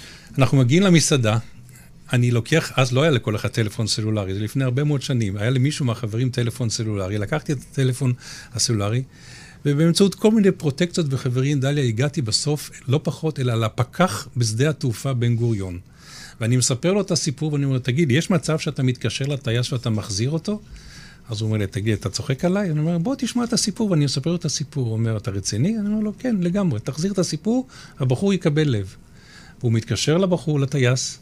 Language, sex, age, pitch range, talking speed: Hebrew, male, 50-69, 115-155 Hz, 165 wpm